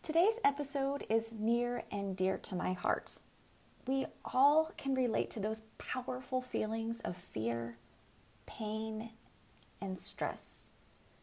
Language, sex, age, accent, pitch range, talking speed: English, female, 30-49, American, 190-250 Hz, 120 wpm